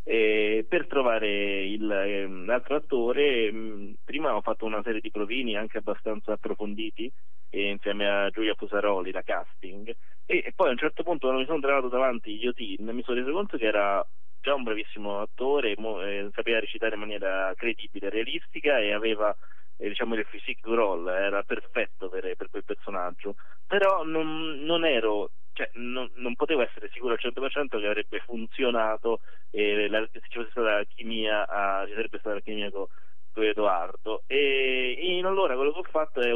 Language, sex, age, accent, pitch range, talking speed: Italian, male, 20-39, native, 110-145 Hz, 170 wpm